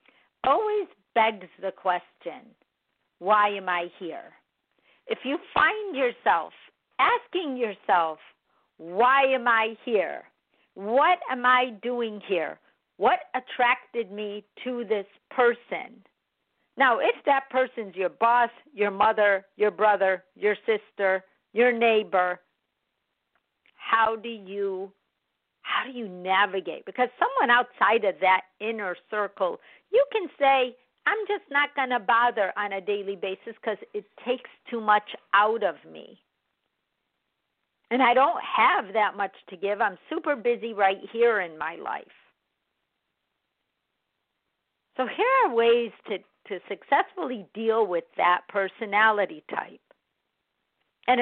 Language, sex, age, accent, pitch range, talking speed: English, female, 50-69, American, 200-260 Hz, 125 wpm